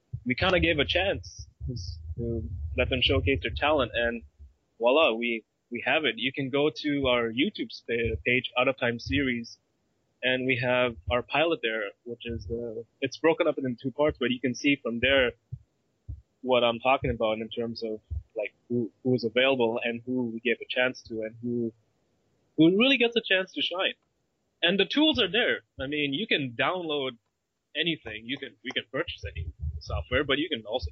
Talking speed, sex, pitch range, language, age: 190 wpm, male, 115-145 Hz, English, 20-39